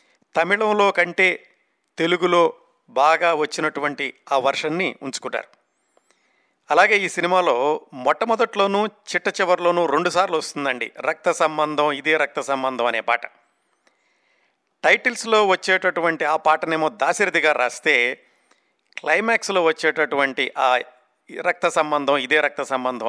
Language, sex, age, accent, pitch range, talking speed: Telugu, male, 50-69, native, 150-185 Hz, 95 wpm